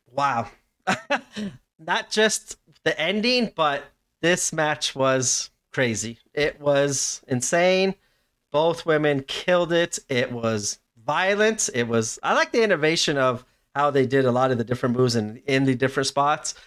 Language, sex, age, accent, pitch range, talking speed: English, male, 30-49, American, 120-150 Hz, 150 wpm